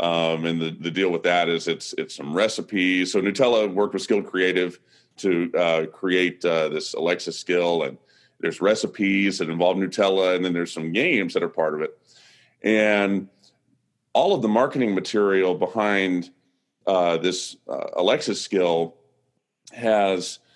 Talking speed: 160 wpm